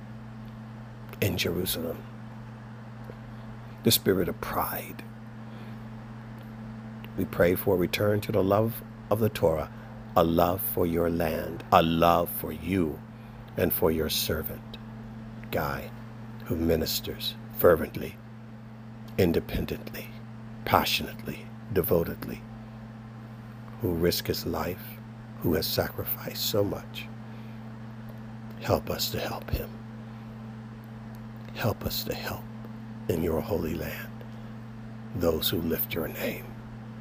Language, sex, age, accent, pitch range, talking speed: English, male, 60-79, American, 110-115 Hz, 105 wpm